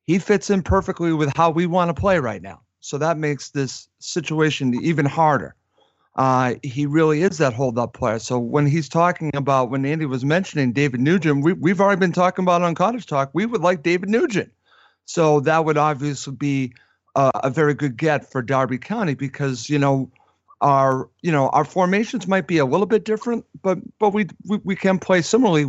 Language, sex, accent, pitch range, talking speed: English, male, American, 140-175 Hz, 205 wpm